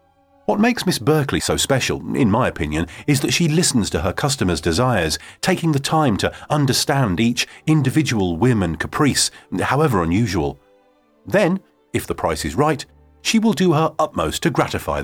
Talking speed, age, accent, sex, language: 170 wpm, 40-59, British, male, English